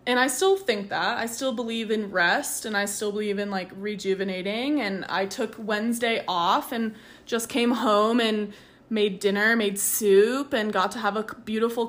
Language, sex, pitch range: English, female, 195-225 Hz